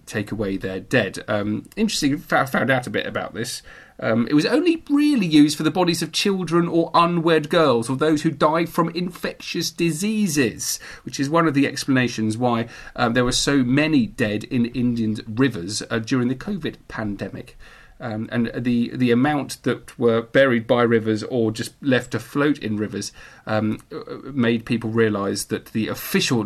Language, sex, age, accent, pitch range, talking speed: English, male, 40-59, British, 110-175 Hz, 180 wpm